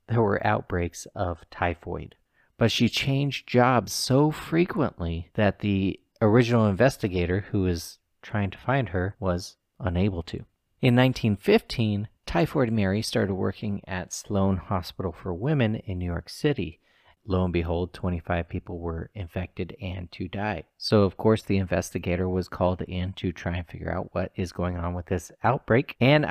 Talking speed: 160 wpm